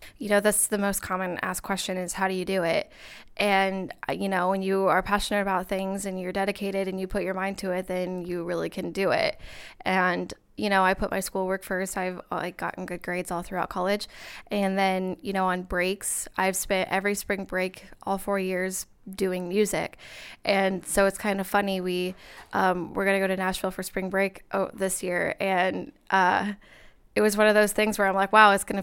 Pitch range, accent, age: 185-200 Hz, American, 20-39